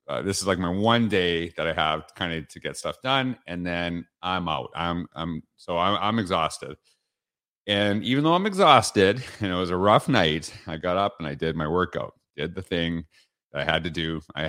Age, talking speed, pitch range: 40-59, 225 wpm, 90-110 Hz